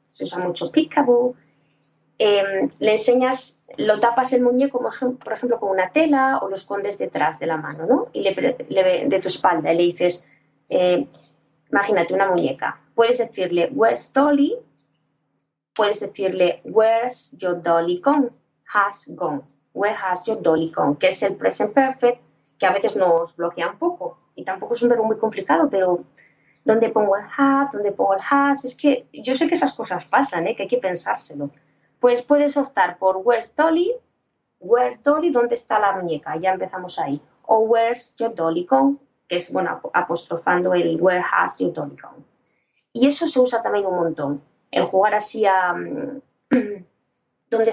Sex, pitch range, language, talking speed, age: female, 175-250 Hz, Spanish, 170 wpm, 20-39